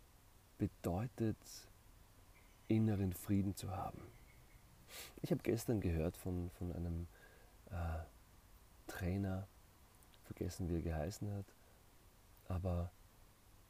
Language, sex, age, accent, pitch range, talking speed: German, male, 40-59, German, 90-105 Hz, 90 wpm